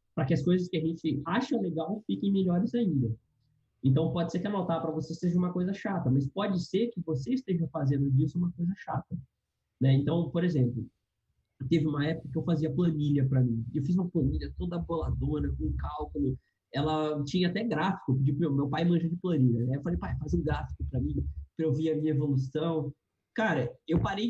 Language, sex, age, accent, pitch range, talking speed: Portuguese, male, 20-39, Brazilian, 135-185 Hz, 200 wpm